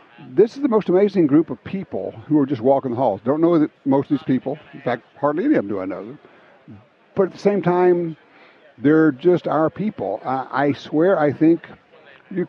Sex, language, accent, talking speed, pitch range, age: male, English, American, 210 wpm, 130-175 Hz, 60-79